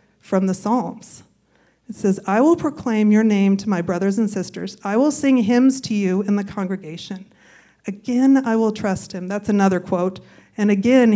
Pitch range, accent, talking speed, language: 190-245 Hz, American, 185 wpm, English